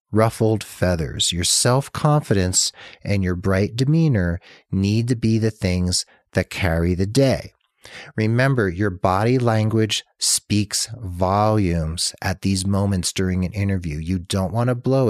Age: 40-59